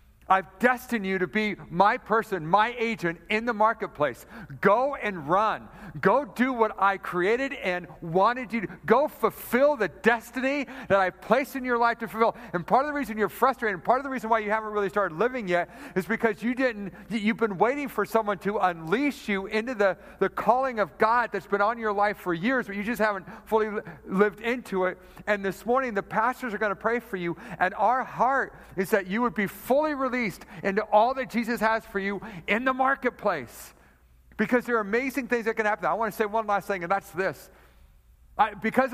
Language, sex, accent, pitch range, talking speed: English, male, American, 185-230 Hz, 215 wpm